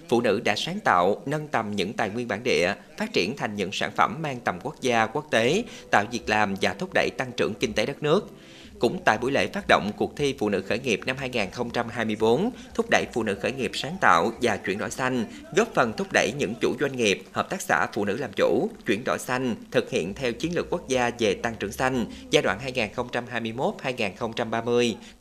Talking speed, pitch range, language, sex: 225 wpm, 115-145 Hz, Vietnamese, male